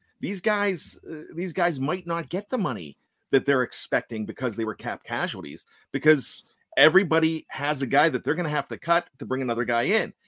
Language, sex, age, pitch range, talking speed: English, male, 50-69, 130-175 Hz, 205 wpm